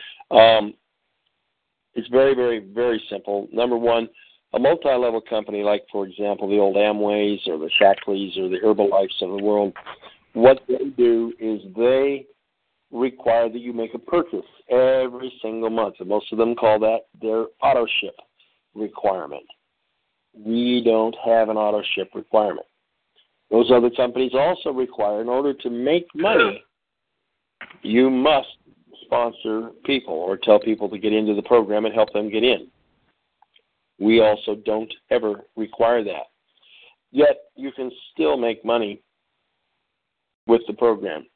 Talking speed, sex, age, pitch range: 140 wpm, male, 50-69, 105-125 Hz